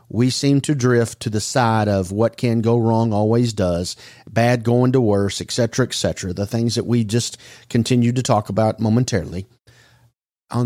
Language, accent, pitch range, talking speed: English, American, 105-125 Hz, 185 wpm